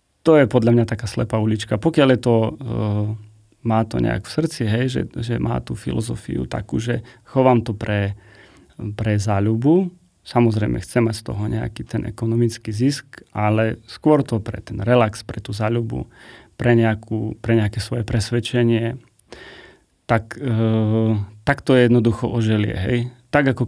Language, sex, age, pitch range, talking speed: Slovak, male, 30-49, 110-120 Hz, 155 wpm